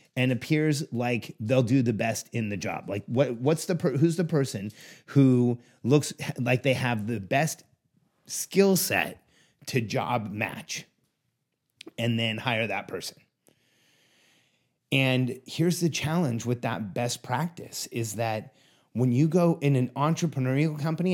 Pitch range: 120-155 Hz